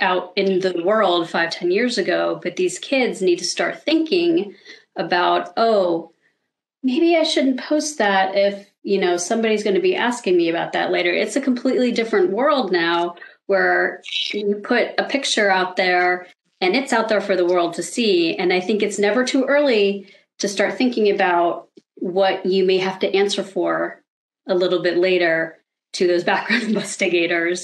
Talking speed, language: 175 wpm, English